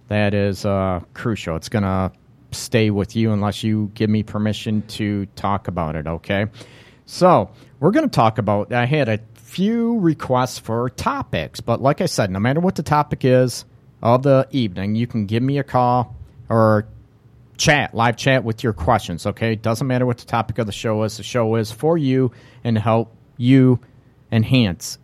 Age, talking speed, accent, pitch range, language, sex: 40-59, 190 wpm, American, 105-130 Hz, English, male